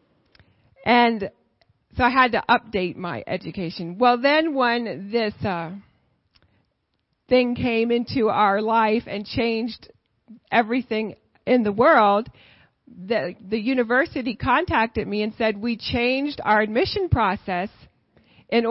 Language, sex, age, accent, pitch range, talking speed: English, female, 40-59, American, 225-300 Hz, 120 wpm